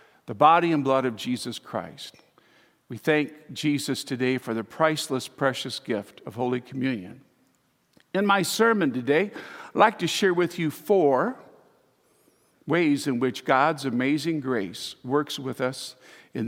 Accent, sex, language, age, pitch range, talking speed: American, male, English, 50-69, 125-155 Hz, 145 wpm